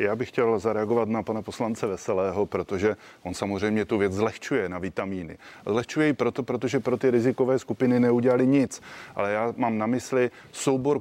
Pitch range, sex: 105-125 Hz, male